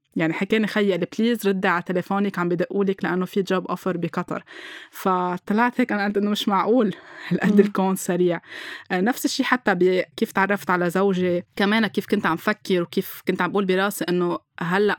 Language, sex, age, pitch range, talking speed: Arabic, female, 20-39, 175-200 Hz, 175 wpm